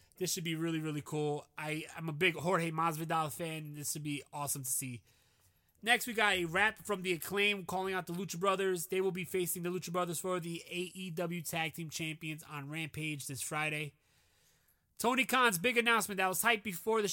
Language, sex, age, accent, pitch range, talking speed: English, male, 20-39, American, 160-205 Hz, 200 wpm